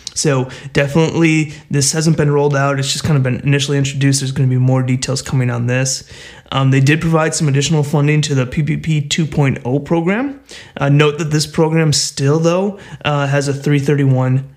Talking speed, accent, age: 190 wpm, American, 20-39